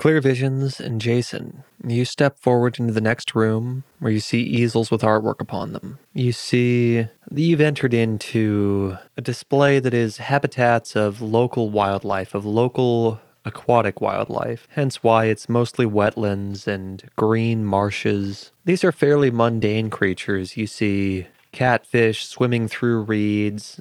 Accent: American